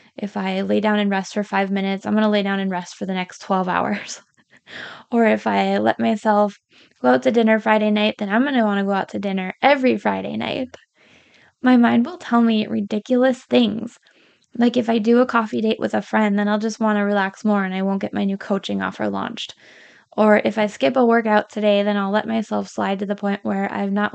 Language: English